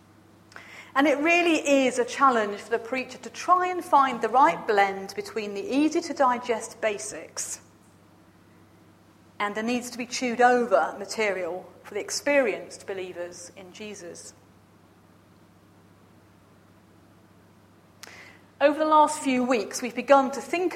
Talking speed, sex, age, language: 115 wpm, female, 40-59, English